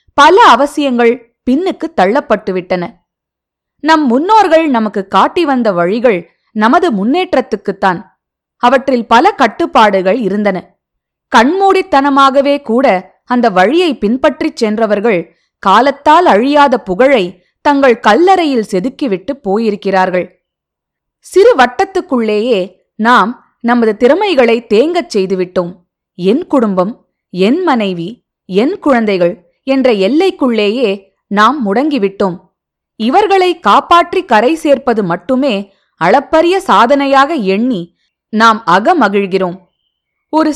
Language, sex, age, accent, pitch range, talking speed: Tamil, female, 20-39, native, 195-290 Hz, 75 wpm